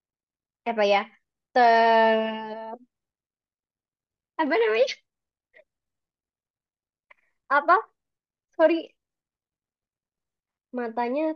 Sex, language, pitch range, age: male, Indonesian, 215-260 Hz, 20-39